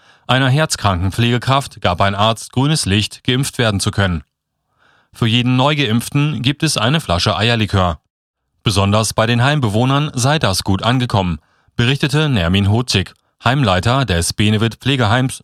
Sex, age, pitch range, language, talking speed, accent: male, 30-49, 100-130 Hz, German, 130 wpm, German